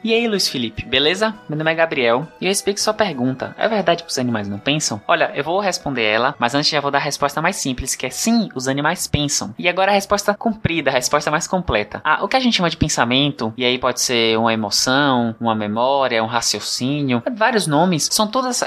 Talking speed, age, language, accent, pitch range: 235 wpm, 20-39, Portuguese, Brazilian, 130-185 Hz